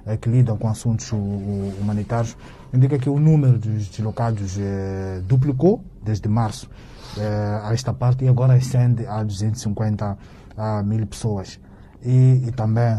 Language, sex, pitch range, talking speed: Portuguese, male, 105-125 Hz, 125 wpm